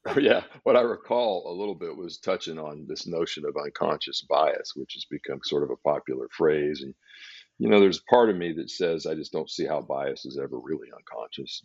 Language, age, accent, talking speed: English, 50-69, American, 215 wpm